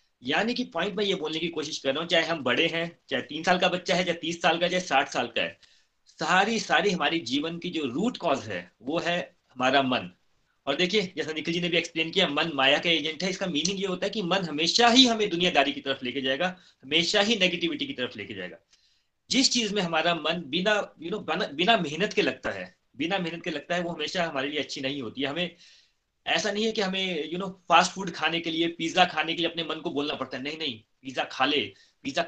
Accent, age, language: native, 30-49, Hindi